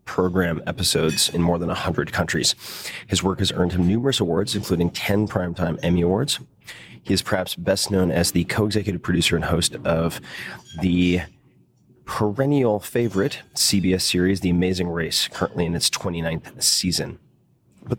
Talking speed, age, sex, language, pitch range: 150 wpm, 30-49, male, English, 85-105 Hz